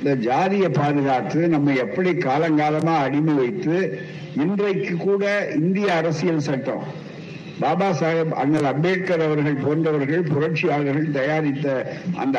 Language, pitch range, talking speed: Tamil, 145-175 Hz, 105 wpm